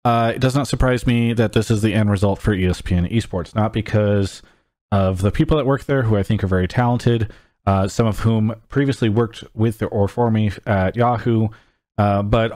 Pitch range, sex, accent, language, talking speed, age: 100-120 Hz, male, American, English, 205 wpm, 30-49